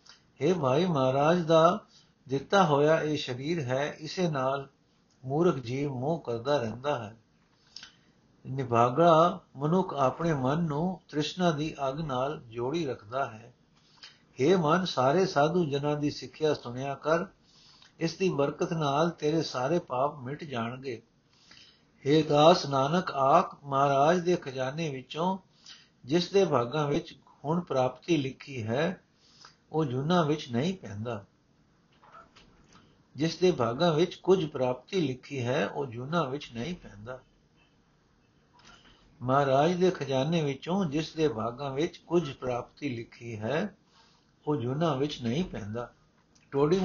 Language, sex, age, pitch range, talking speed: Punjabi, male, 60-79, 130-170 Hz, 125 wpm